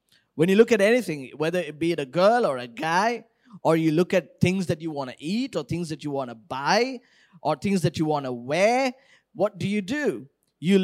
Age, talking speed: 20-39, 235 wpm